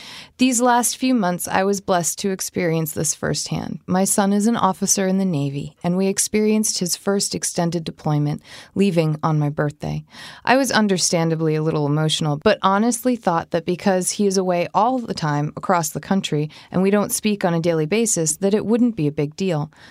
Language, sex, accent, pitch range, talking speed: English, female, American, 155-200 Hz, 195 wpm